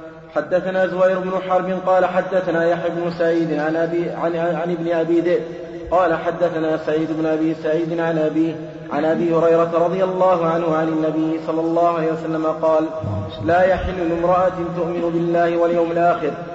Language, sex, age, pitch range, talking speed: Arabic, male, 30-49, 160-170 Hz, 155 wpm